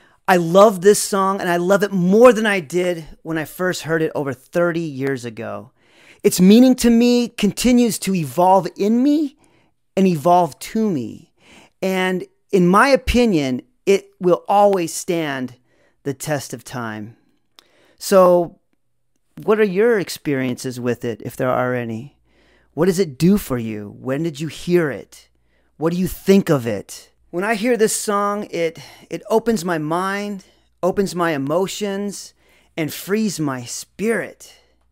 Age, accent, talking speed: 40-59, American, 155 wpm